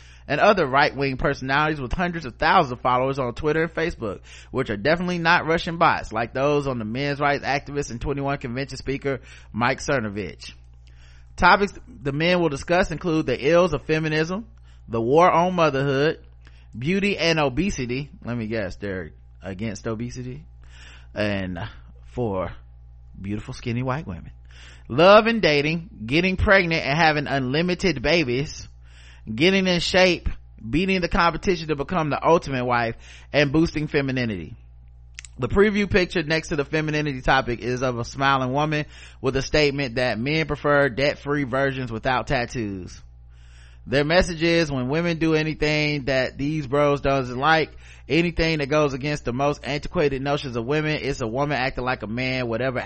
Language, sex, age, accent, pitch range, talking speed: English, male, 30-49, American, 105-155 Hz, 155 wpm